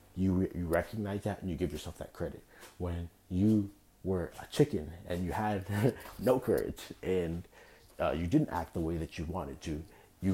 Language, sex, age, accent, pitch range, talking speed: English, male, 30-49, American, 85-100 Hz, 185 wpm